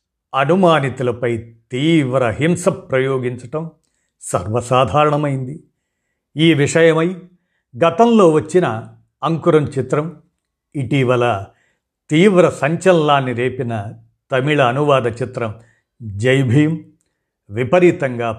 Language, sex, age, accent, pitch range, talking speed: Telugu, male, 50-69, native, 120-165 Hz, 65 wpm